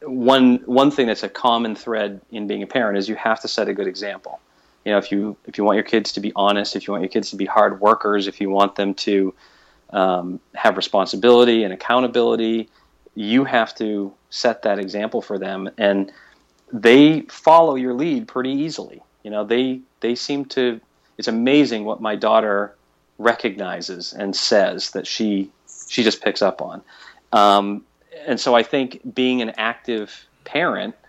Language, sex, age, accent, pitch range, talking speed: English, male, 40-59, American, 100-125 Hz, 185 wpm